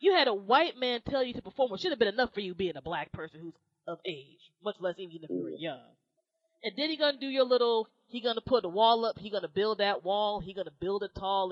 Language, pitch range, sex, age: English, 155-195 Hz, female, 20-39